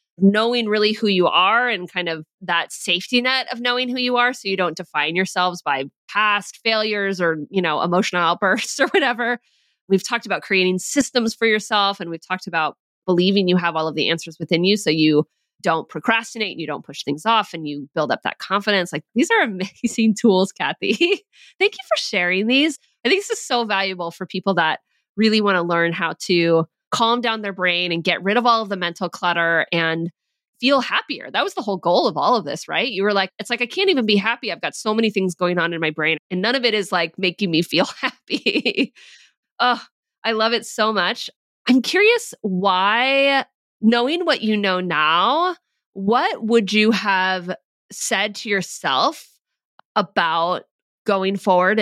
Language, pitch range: English, 175-230 Hz